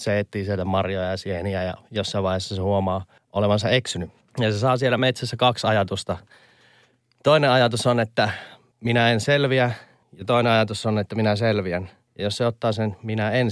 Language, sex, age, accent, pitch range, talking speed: Finnish, male, 30-49, native, 95-120 Hz, 185 wpm